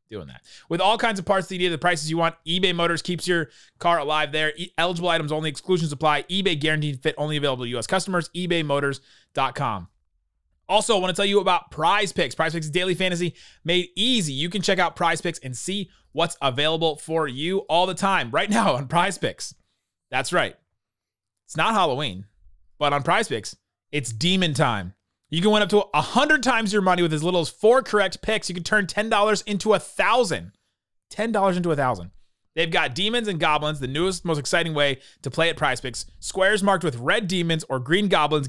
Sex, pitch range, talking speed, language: male, 145-190 Hz, 210 wpm, English